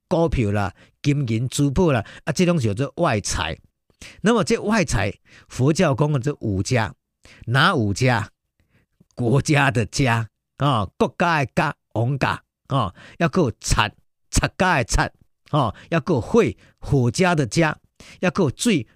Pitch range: 120-170 Hz